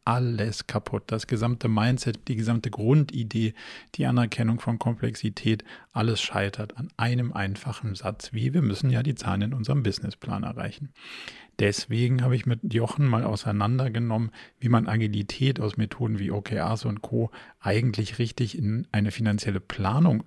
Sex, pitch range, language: male, 105-125 Hz, German